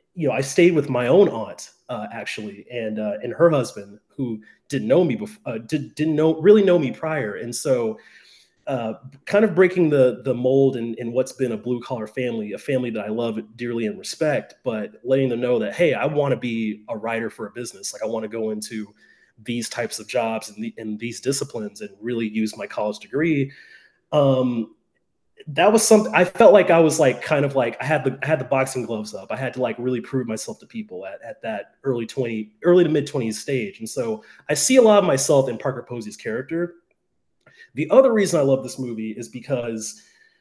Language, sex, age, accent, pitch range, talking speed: English, male, 30-49, American, 115-165 Hz, 225 wpm